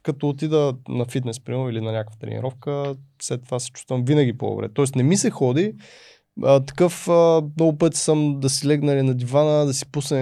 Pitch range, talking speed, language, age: 115-145 Hz, 200 wpm, Bulgarian, 20-39